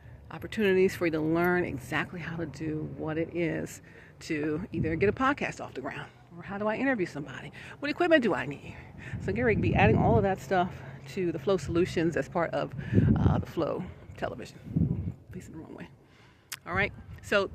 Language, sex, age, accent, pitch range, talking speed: English, female, 40-59, American, 165-205 Hz, 195 wpm